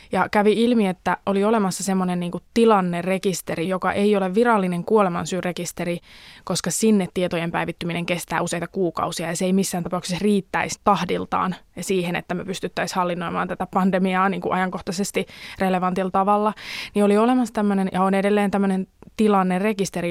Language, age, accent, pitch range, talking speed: Finnish, 20-39, native, 180-200 Hz, 140 wpm